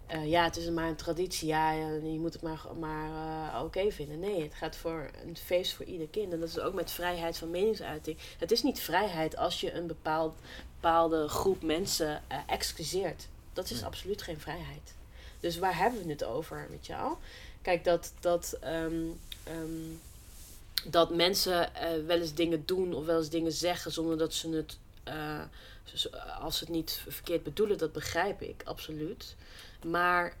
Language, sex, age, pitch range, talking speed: Dutch, female, 20-39, 155-190 Hz, 185 wpm